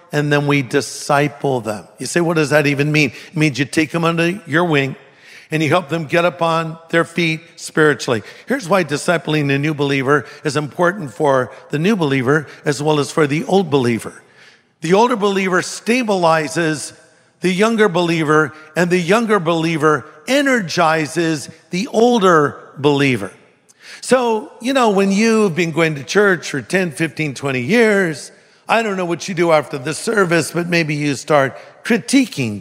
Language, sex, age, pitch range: English, male, 50-69, 155-210 Hz